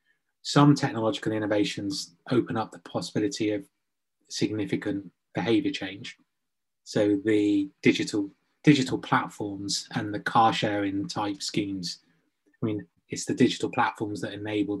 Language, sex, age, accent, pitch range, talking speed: English, male, 20-39, British, 105-135 Hz, 120 wpm